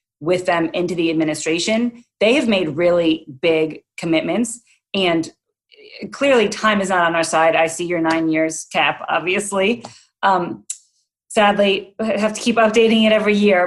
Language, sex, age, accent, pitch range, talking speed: English, female, 30-49, American, 165-210 Hz, 160 wpm